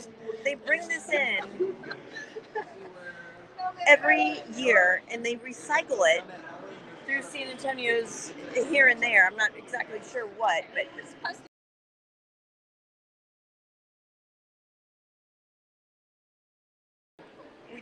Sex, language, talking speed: female, English, 75 wpm